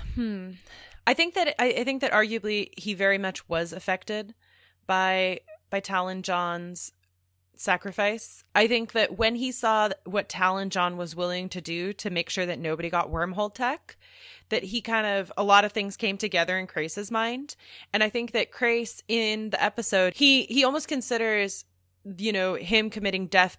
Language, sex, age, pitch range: English, female, 20-39, 175-215 Hz